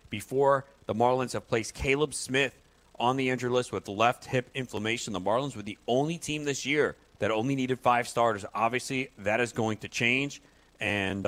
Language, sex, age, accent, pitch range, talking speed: English, male, 40-59, American, 90-115 Hz, 185 wpm